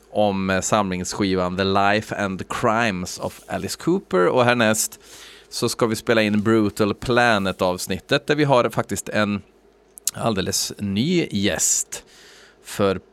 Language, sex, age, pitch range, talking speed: Swedish, male, 30-49, 100-125 Hz, 135 wpm